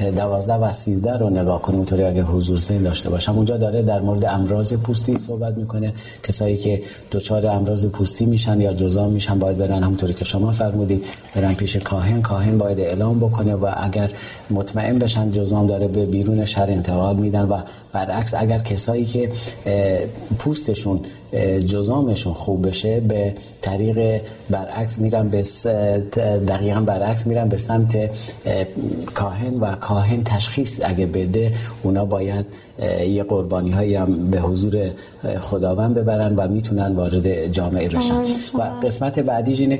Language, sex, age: Persian, male, 40-59